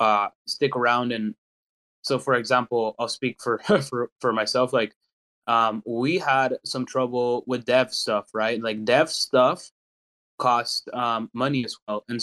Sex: male